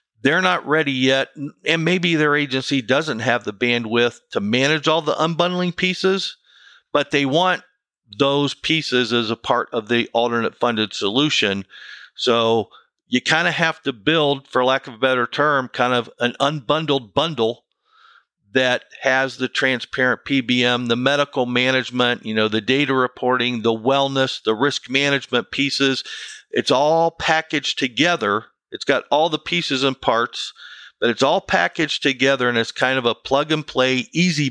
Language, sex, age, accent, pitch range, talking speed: English, male, 50-69, American, 125-150 Hz, 160 wpm